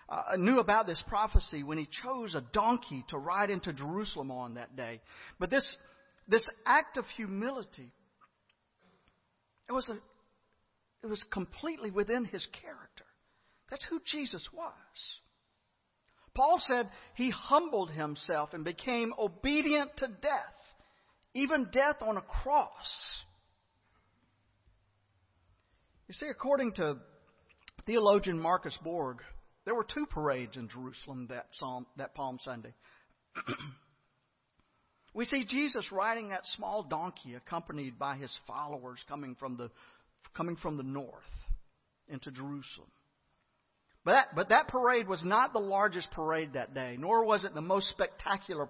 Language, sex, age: English, male, 50-69